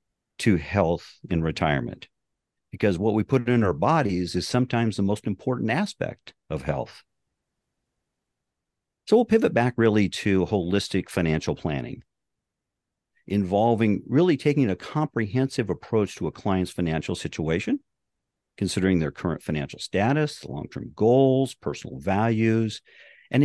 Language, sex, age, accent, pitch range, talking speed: English, male, 50-69, American, 95-130 Hz, 125 wpm